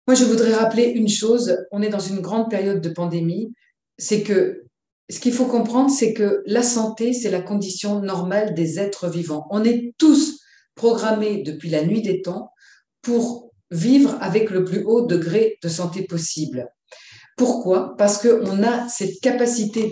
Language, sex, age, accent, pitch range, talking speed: French, female, 40-59, French, 195-240 Hz, 170 wpm